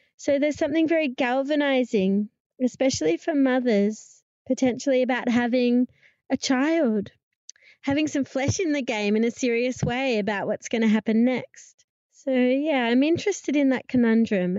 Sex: female